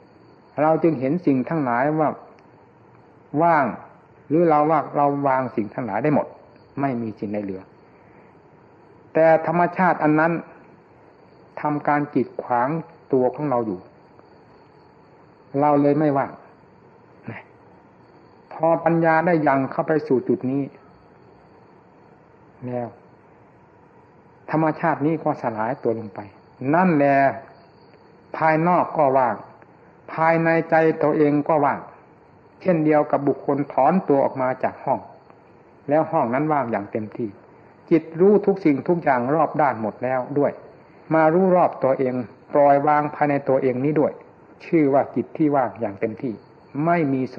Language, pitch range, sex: Thai, 130-160 Hz, male